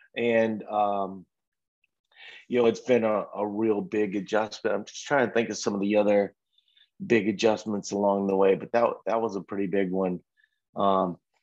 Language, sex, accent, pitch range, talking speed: English, male, American, 110-135 Hz, 185 wpm